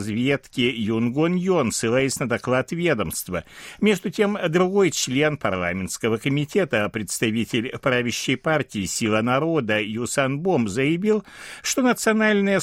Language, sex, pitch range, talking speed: Russian, male, 110-170 Hz, 105 wpm